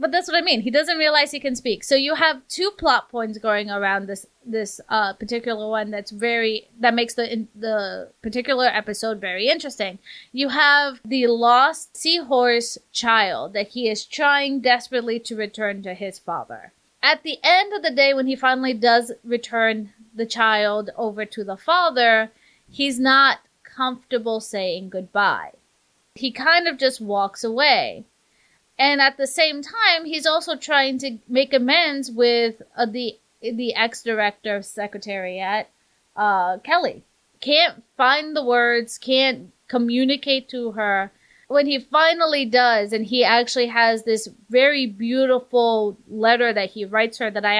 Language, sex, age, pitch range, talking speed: English, female, 30-49, 220-270 Hz, 160 wpm